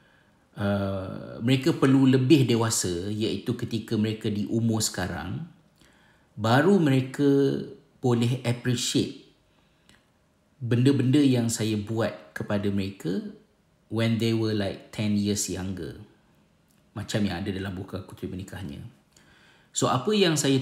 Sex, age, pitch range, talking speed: male, 50-69, 100-120 Hz, 115 wpm